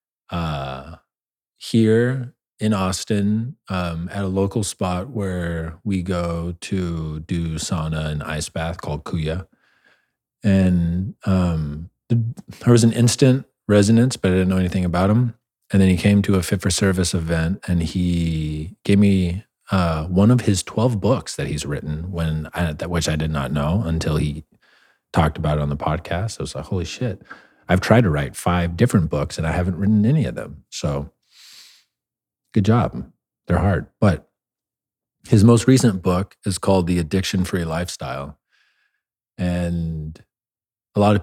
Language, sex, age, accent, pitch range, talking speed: English, male, 30-49, American, 80-100 Hz, 165 wpm